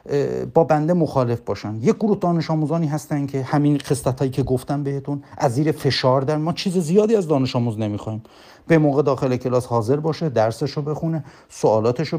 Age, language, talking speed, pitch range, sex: 50-69, Persian, 170 wpm, 125-170 Hz, male